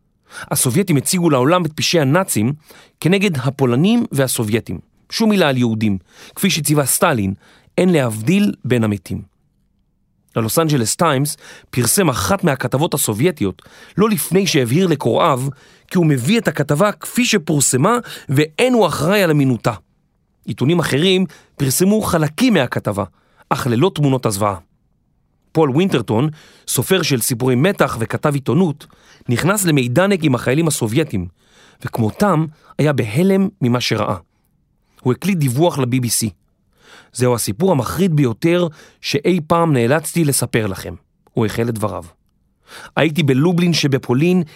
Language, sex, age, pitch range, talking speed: Hebrew, male, 30-49, 125-175 Hz, 120 wpm